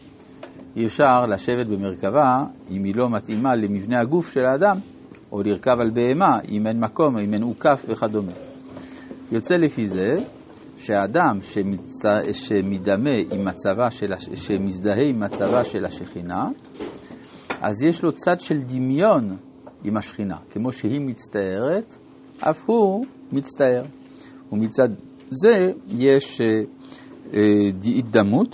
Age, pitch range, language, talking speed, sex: 50-69, 105-145 Hz, Hebrew, 115 wpm, male